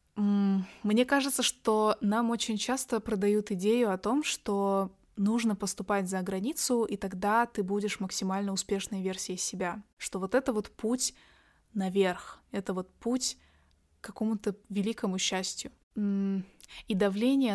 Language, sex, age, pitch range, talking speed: Russian, female, 20-39, 190-215 Hz, 130 wpm